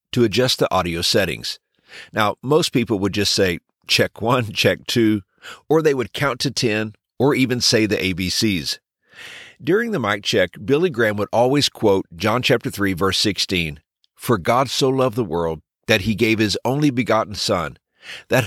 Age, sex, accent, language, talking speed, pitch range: 50-69, male, American, English, 175 wpm, 95-130 Hz